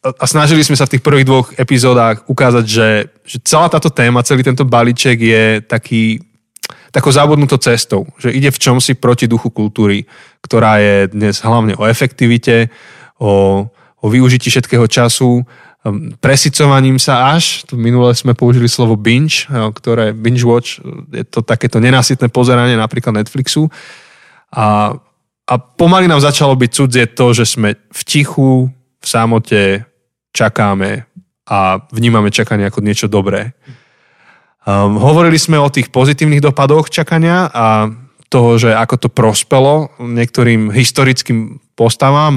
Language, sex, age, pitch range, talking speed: Slovak, male, 20-39, 115-135 Hz, 135 wpm